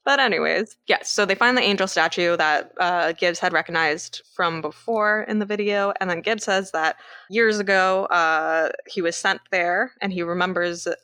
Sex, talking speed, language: female, 185 wpm, English